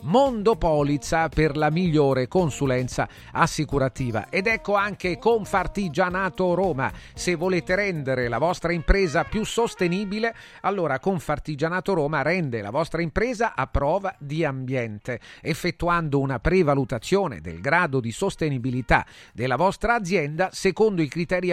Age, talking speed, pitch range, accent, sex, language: 40-59, 120 wpm, 140-195 Hz, native, male, Italian